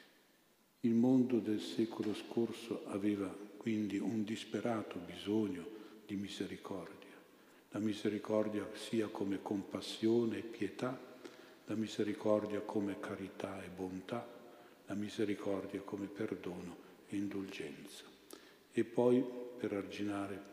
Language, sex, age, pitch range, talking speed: Italian, male, 50-69, 100-110 Hz, 100 wpm